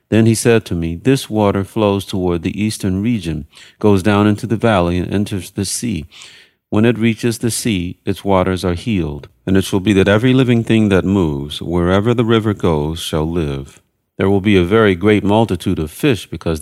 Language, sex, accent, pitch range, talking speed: English, male, American, 85-110 Hz, 200 wpm